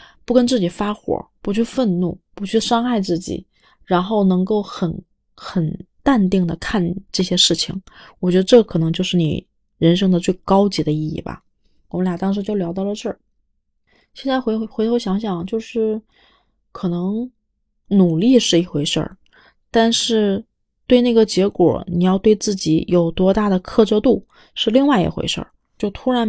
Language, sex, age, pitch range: Chinese, female, 20-39, 175-215 Hz